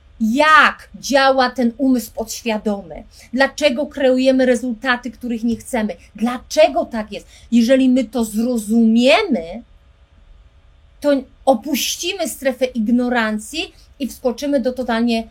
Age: 30-49